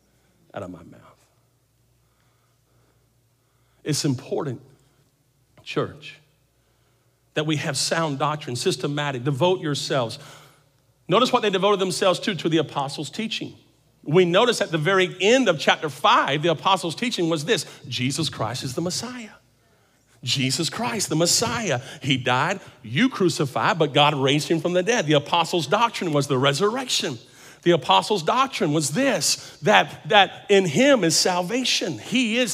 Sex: male